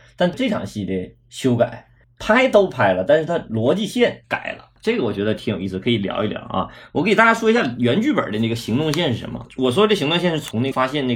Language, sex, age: Chinese, male, 20-39